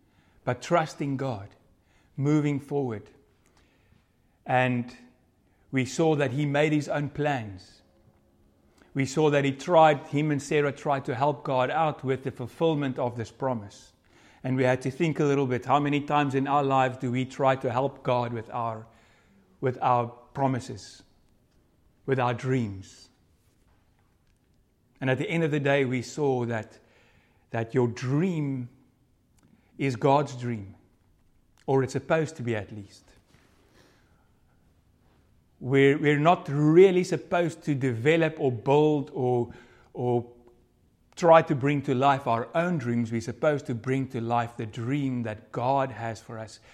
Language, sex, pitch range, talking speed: English, male, 115-145 Hz, 150 wpm